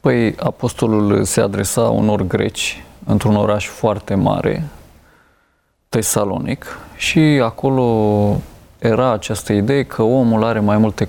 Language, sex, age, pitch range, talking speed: Romanian, male, 20-39, 105-125 Hz, 115 wpm